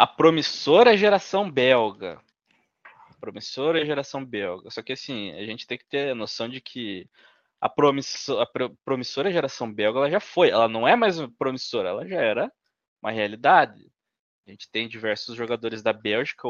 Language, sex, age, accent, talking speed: Portuguese, male, 20-39, Brazilian, 165 wpm